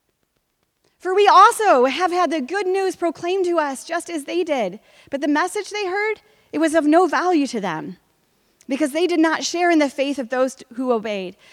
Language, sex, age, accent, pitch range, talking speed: English, female, 30-49, American, 235-340 Hz, 205 wpm